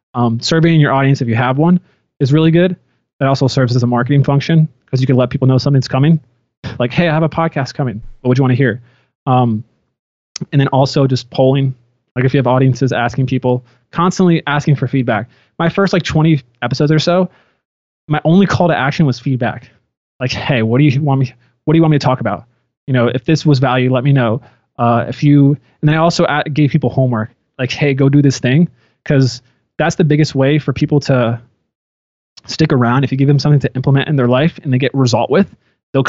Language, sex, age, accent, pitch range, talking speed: English, male, 20-39, American, 125-150 Hz, 225 wpm